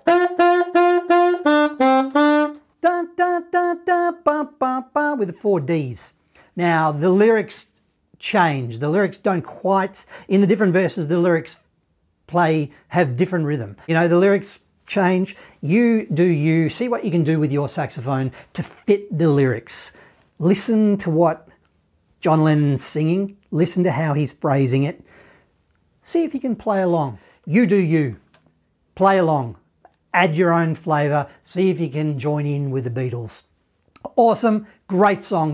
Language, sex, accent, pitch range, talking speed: English, male, Australian, 150-225 Hz, 135 wpm